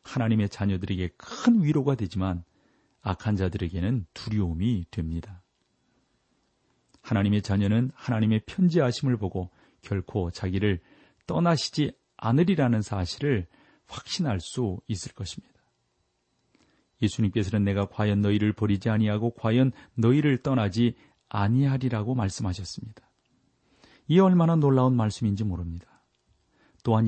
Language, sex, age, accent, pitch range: Korean, male, 40-59, native, 100-130 Hz